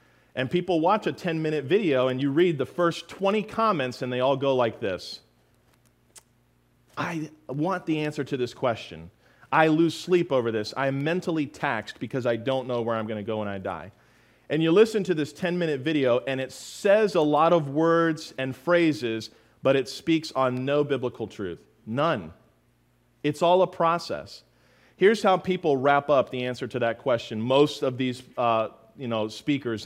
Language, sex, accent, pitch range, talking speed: English, male, American, 125-175 Hz, 185 wpm